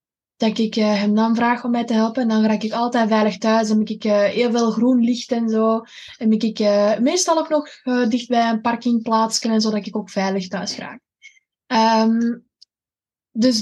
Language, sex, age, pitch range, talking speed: Dutch, female, 20-39, 215-240 Hz, 210 wpm